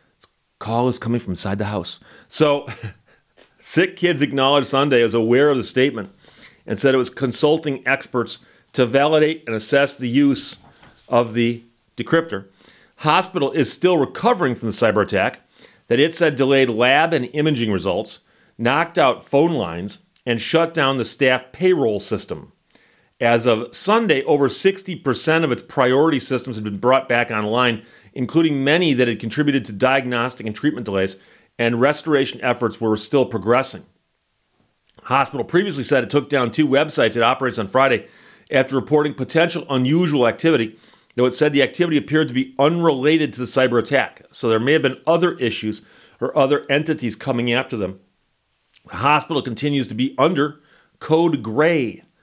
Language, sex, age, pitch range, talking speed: English, male, 40-59, 115-150 Hz, 160 wpm